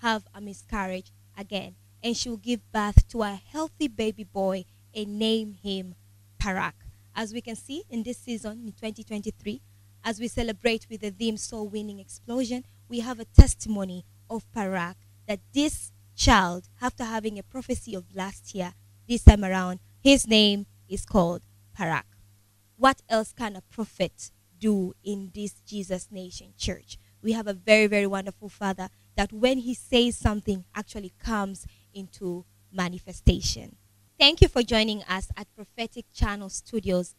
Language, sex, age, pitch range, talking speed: English, female, 20-39, 185-230 Hz, 155 wpm